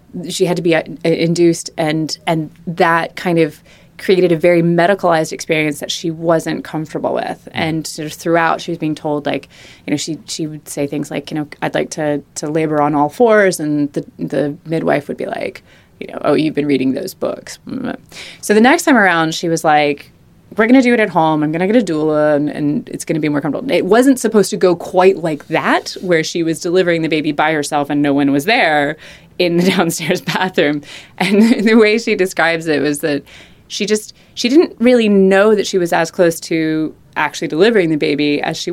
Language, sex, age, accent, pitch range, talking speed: English, female, 20-39, American, 150-190 Hz, 220 wpm